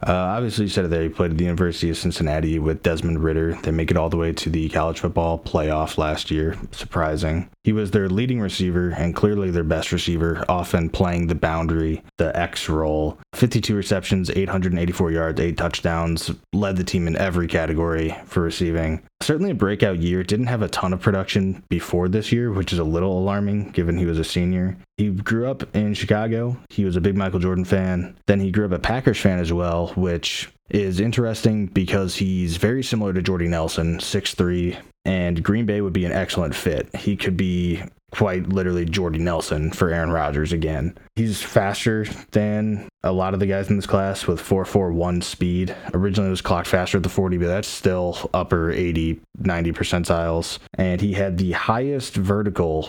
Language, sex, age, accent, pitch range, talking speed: English, male, 20-39, American, 85-100 Hz, 195 wpm